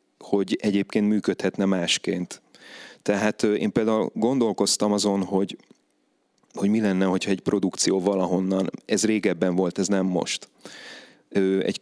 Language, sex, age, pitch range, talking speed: Hungarian, male, 30-49, 95-105 Hz, 120 wpm